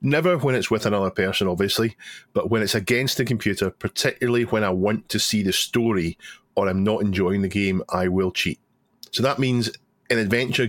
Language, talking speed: English, 195 wpm